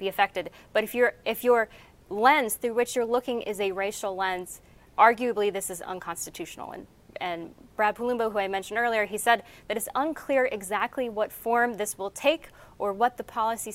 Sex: female